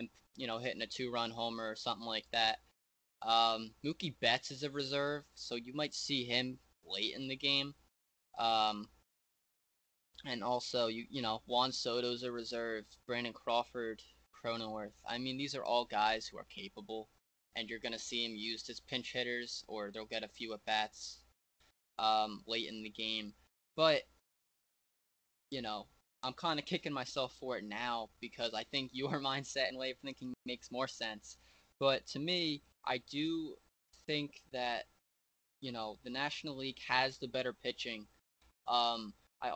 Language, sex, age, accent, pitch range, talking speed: English, male, 10-29, American, 110-135 Hz, 165 wpm